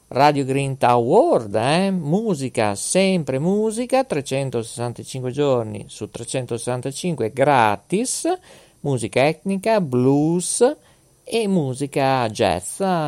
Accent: native